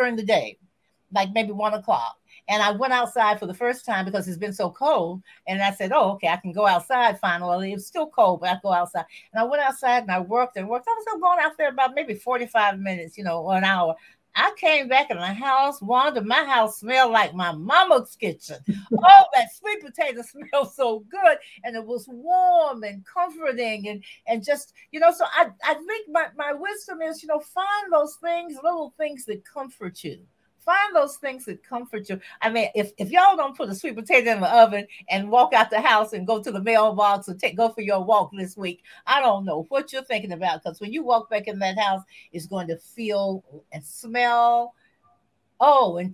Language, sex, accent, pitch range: English, female, American, 195-285 Hz